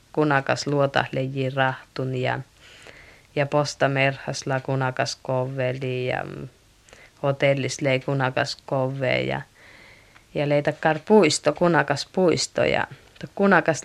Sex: female